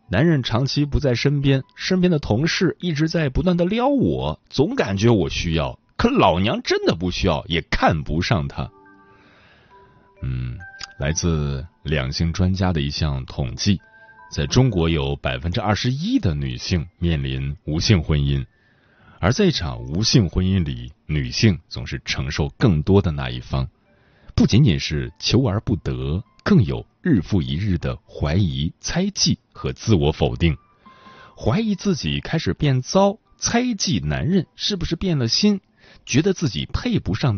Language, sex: Chinese, male